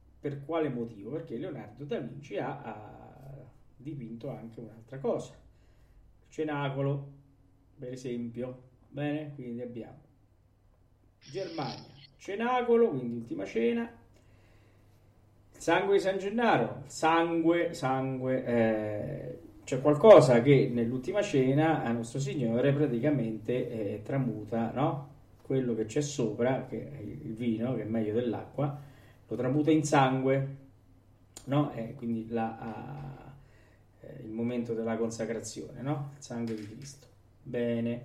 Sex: male